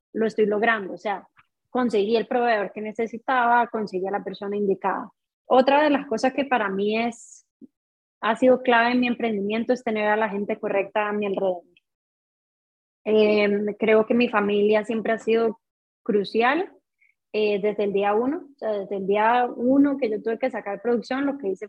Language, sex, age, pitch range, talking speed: Spanish, female, 20-39, 205-250 Hz, 185 wpm